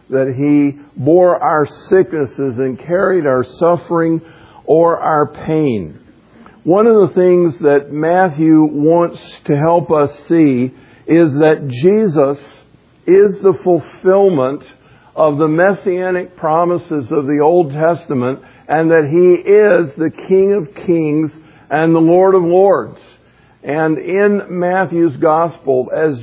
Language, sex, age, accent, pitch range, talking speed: English, male, 50-69, American, 145-180 Hz, 125 wpm